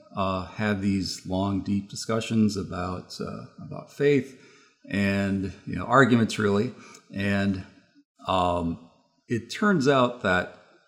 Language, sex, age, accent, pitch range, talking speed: English, male, 40-59, American, 95-115 Hz, 115 wpm